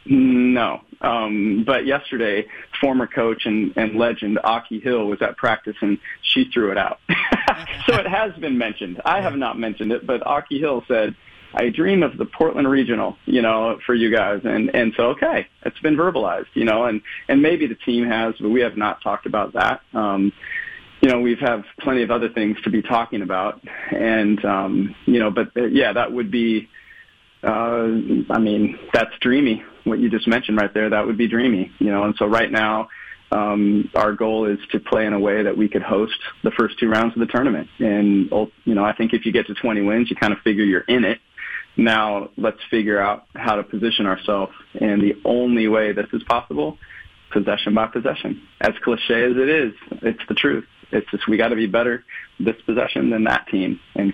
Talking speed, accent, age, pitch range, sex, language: 205 wpm, American, 30-49, 105-120 Hz, male, English